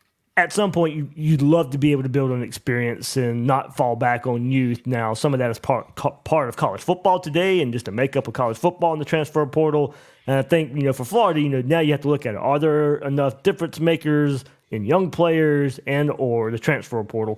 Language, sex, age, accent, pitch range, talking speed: English, male, 30-49, American, 130-165 Hz, 235 wpm